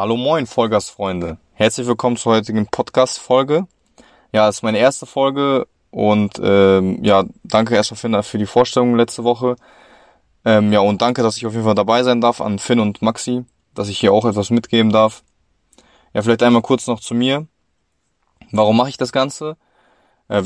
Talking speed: 175 wpm